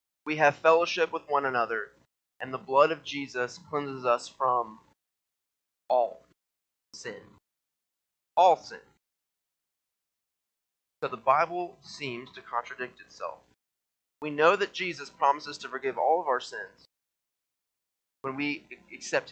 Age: 20-39